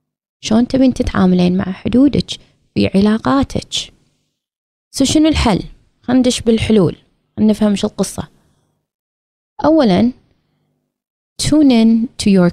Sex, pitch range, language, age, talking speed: female, 175-230 Hz, Arabic, 20-39, 85 wpm